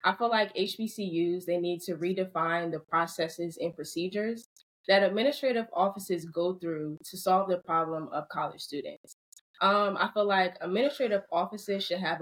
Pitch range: 165-195 Hz